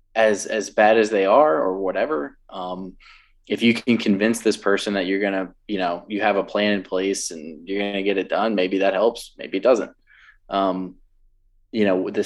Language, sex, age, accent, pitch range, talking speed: English, male, 20-39, American, 95-110 Hz, 220 wpm